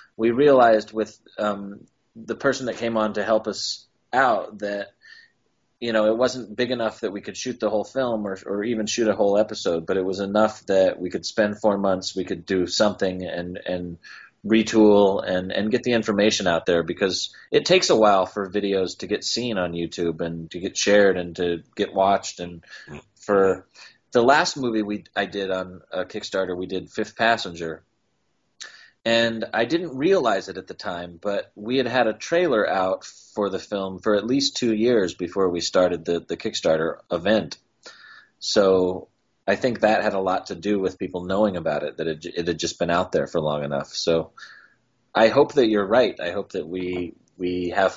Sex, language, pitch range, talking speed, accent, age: male, English, 90-110 Hz, 200 wpm, American, 30-49